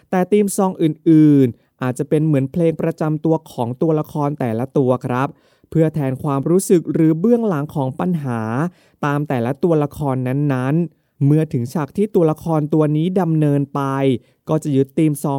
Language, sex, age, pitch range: Thai, male, 20-39, 130-160 Hz